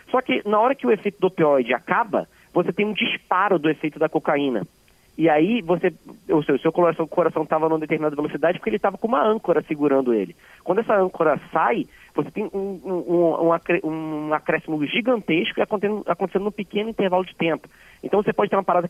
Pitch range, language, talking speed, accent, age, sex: 150-185 Hz, Portuguese, 195 wpm, Brazilian, 30-49, male